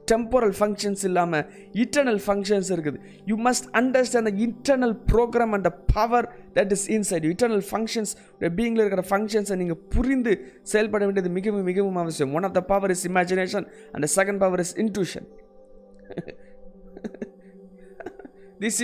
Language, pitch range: Tamil, 180-225 Hz